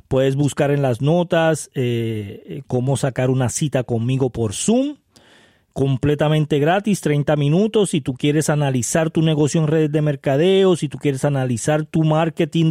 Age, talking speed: 30-49, 155 wpm